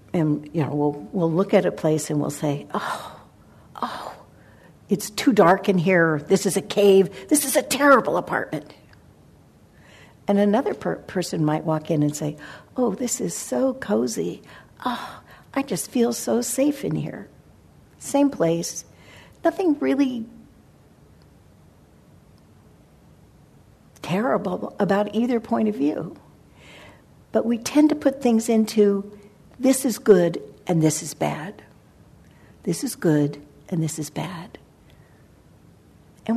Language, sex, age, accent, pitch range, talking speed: English, female, 60-79, American, 160-235 Hz, 135 wpm